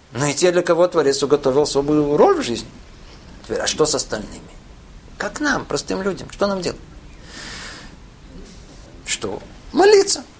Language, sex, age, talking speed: Russian, male, 50-69, 140 wpm